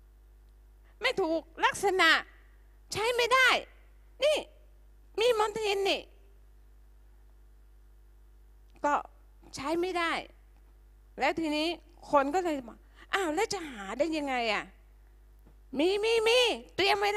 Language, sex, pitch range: Thai, female, 215-365 Hz